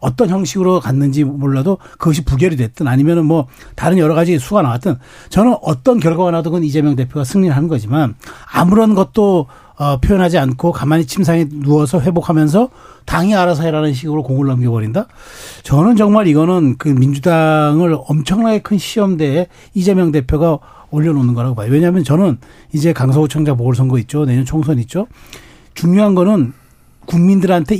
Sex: male